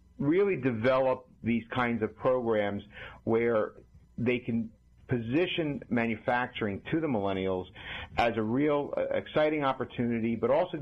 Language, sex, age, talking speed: English, male, 50-69, 115 wpm